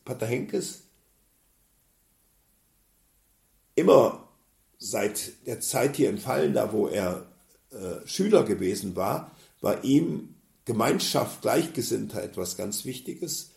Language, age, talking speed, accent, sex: German, 50-69, 100 wpm, German, male